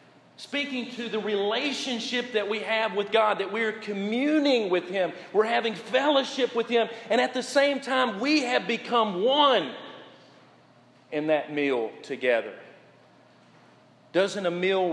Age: 40-59